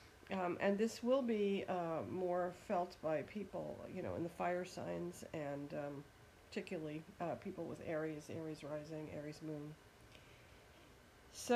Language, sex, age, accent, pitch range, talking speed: English, female, 50-69, American, 150-195 Hz, 145 wpm